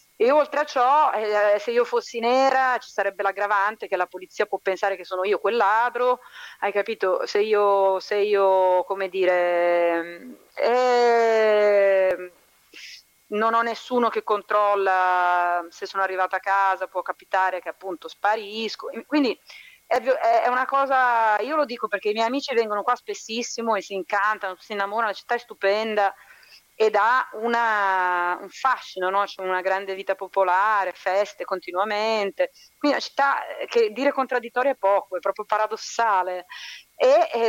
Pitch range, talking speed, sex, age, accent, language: 185-235 Hz, 155 wpm, female, 30-49, native, Italian